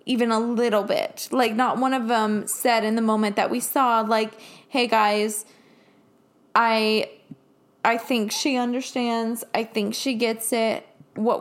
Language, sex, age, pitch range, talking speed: English, female, 20-39, 225-260 Hz, 160 wpm